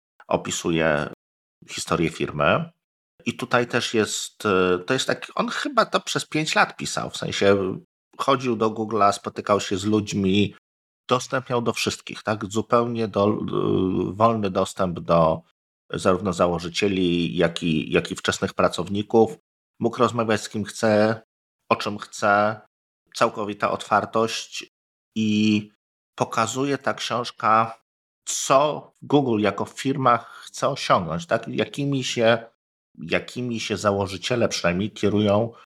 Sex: male